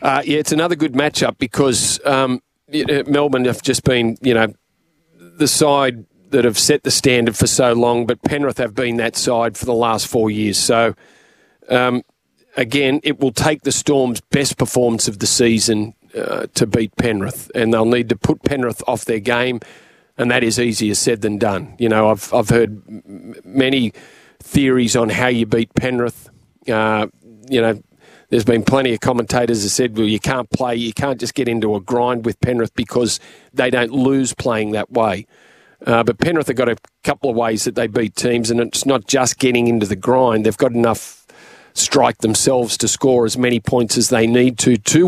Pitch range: 115-130 Hz